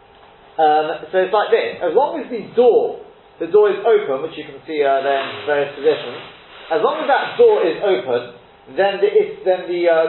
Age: 40-59